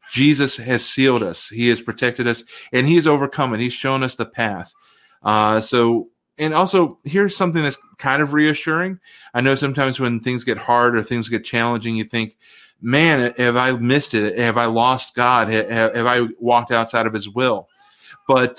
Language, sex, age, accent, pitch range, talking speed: English, male, 30-49, American, 115-135 Hz, 185 wpm